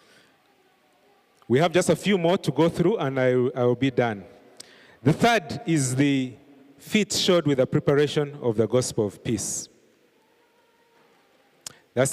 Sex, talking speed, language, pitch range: male, 150 wpm, English, 130-175 Hz